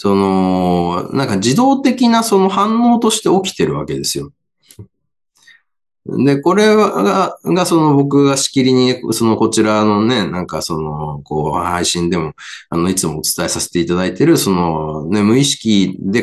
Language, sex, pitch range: Japanese, male, 90-145 Hz